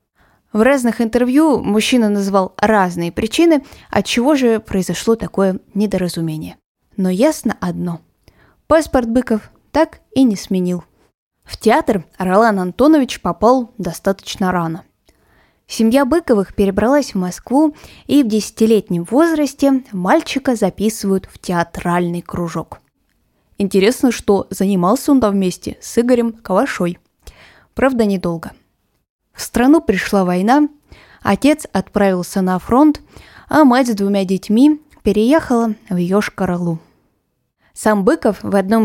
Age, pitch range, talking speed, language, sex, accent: 20-39, 190-260 Hz, 115 wpm, Russian, female, native